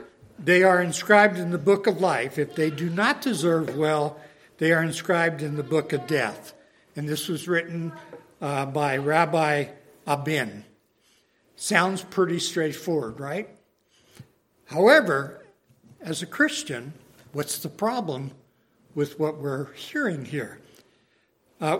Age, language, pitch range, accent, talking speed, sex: 60-79, English, 145-200 Hz, American, 130 wpm, male